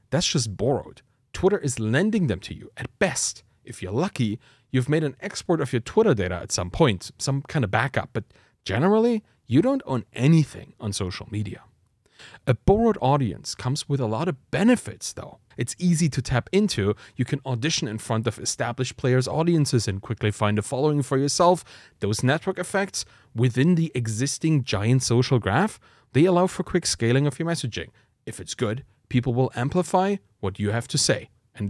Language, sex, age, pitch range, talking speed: English, male, 30-49, 110-160 Hz, 185 wpm